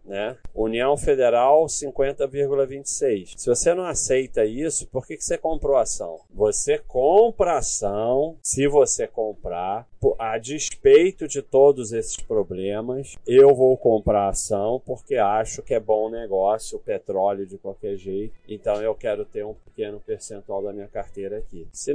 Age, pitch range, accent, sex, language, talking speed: 40-59, 100-170 Hz, Brazilian, male, Portuguese, 155 wpm